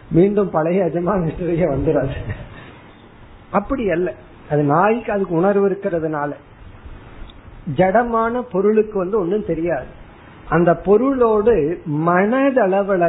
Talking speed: 85 wpm